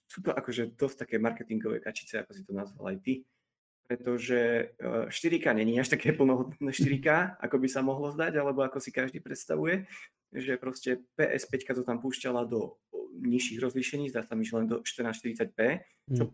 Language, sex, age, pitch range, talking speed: Slovak, male, 20-39, 115-135 Hz, 170 wpm